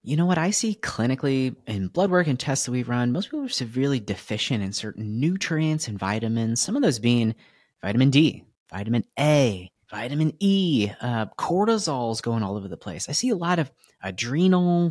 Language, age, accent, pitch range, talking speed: English, 30-49, American, 115-160 Hz, 195 wpm